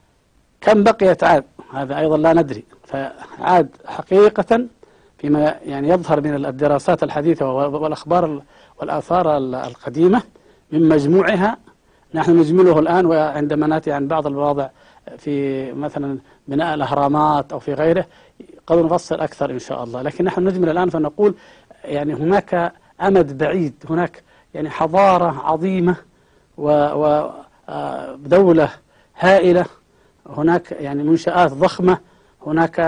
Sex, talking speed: male, 115 wpm